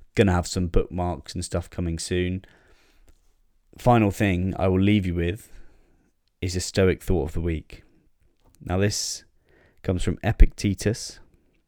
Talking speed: 145 wpm